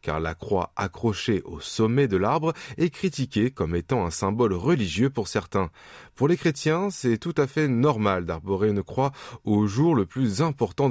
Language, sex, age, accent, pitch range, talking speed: French, male, 20-39, French, 100-145 Hz, 180 wpm